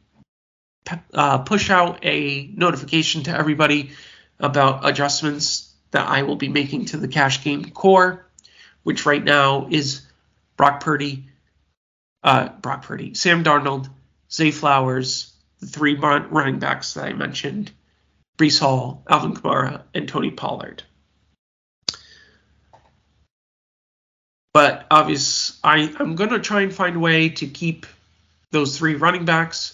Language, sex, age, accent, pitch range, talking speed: English, male, 40-59, American, 135-165 Hz, 125 wpm